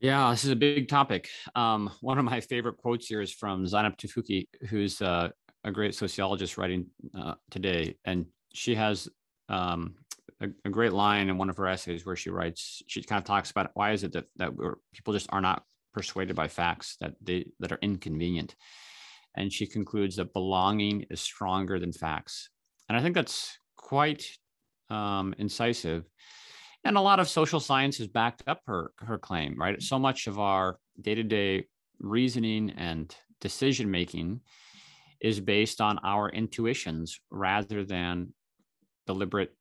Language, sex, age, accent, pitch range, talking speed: English, male, 30-49, American, 95-120 Hz, 160 wpm